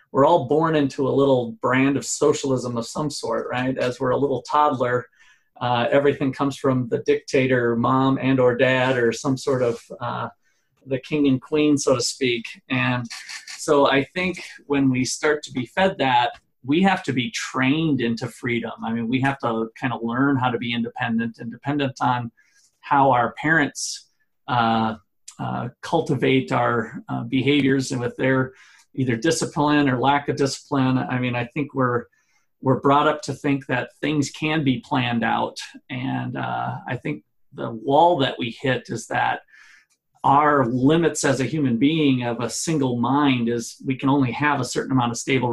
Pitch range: 120-145 Hz